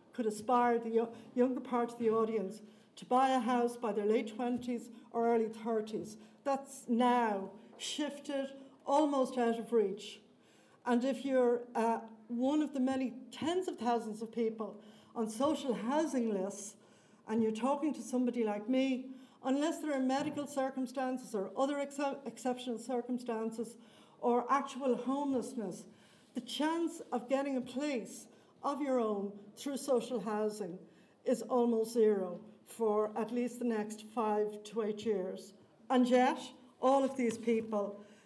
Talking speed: 145 wpm